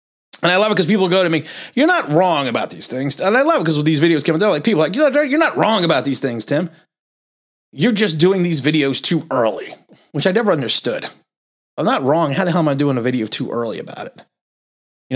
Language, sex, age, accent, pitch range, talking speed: English, male, 30-49, American, 130-190 Hz, 250 wpm